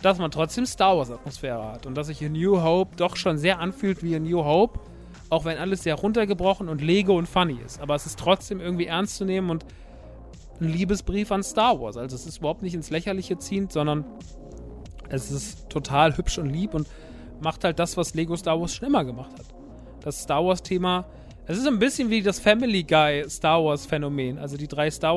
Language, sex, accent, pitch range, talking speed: German, male, German, 150-190 Hz, 205 wpm